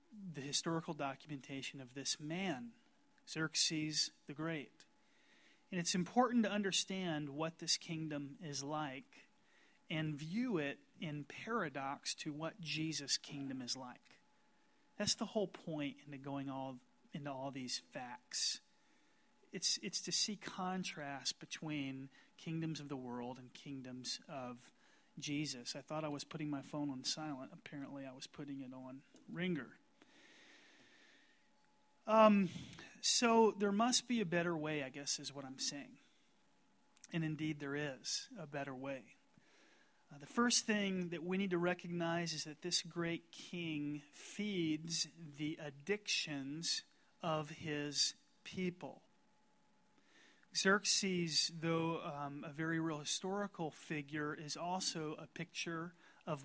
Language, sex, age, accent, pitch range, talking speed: English, male, 30-49, American, 145-200 Hz, 135 wpm